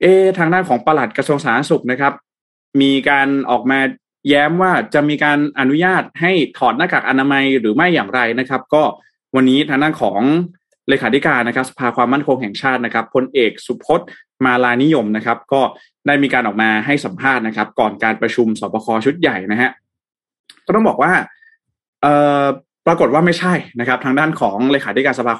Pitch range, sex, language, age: 115-145 Hz, male, Thai, 20-39